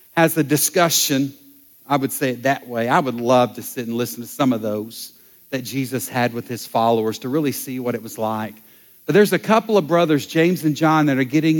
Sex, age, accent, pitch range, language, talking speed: male, 50-69, American, 135-170 Hz, English, 235 wpm